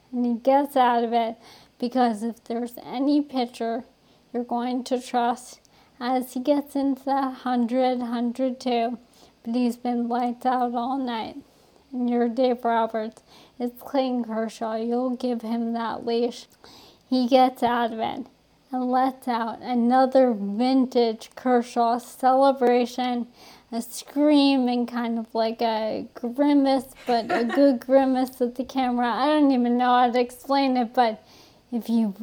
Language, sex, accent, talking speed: English, female, American, 145 wpm